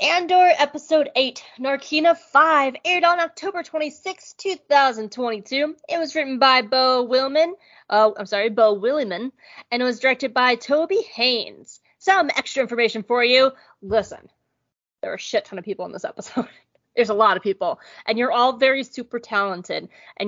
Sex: female